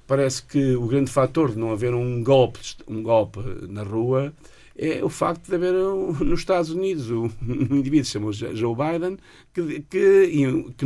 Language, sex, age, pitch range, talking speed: Portuguese, male, 50-69, 110-140 Hz, 165 wpm